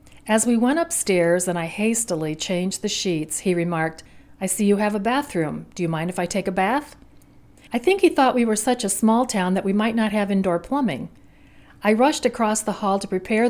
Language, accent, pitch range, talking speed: English, American, 175-225 Hz, 220 wpm